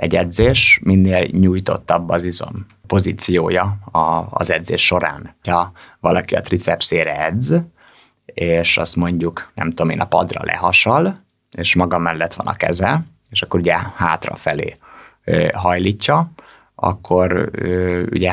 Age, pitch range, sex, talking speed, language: 30-49, 85-105 Hz, male, 120 wpm, Hungarian